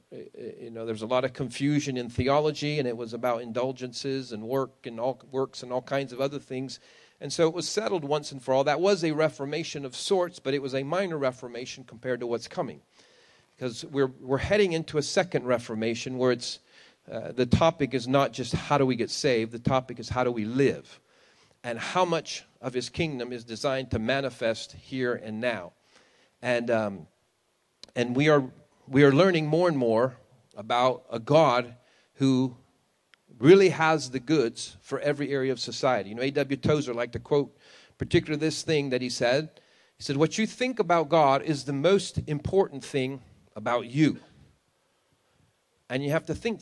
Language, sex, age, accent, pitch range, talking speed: English, male, 40-59, American, 120-150 Hz, 190 wpm